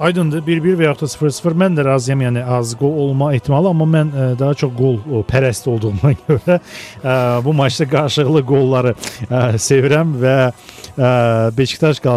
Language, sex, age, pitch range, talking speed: Russian, male, 40-59, 120-150 Hz, 145 wpm